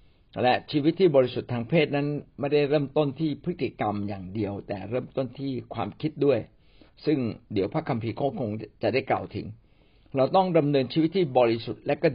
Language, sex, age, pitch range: Thai, male, 60-79, 110-155 Hz